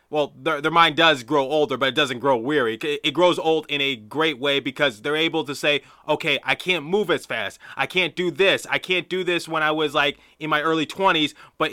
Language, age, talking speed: English, 30-49, 240 wpm